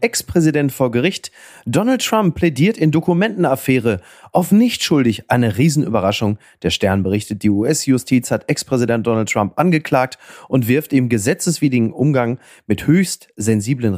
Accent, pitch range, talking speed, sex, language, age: German, 110-140 Hz, 135 wpm, male, German, 30-49